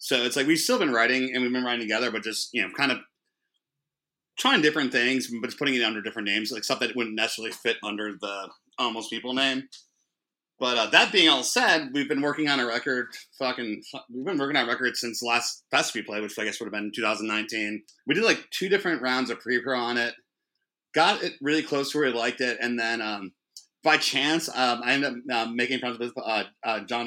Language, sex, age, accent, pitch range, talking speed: English, male, 30-49, American, 110-130 Hz, 235 wpm